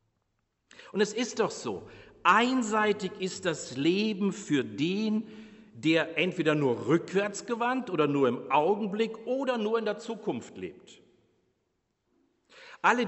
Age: 50-69